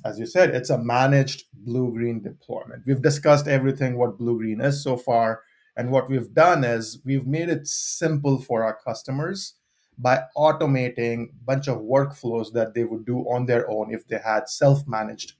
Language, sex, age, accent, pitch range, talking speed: English, male, 30-49, Indian, 115-145 Hz, 175 wpm